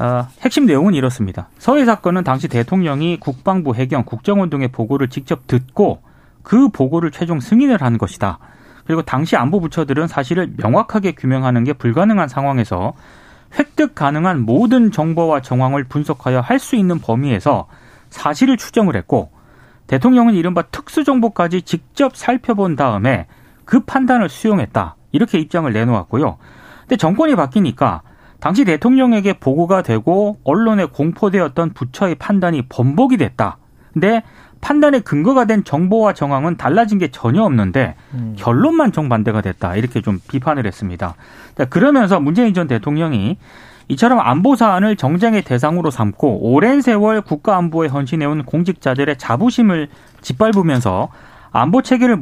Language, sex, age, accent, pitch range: Korean, male, 30-49, native, 130-215 Hz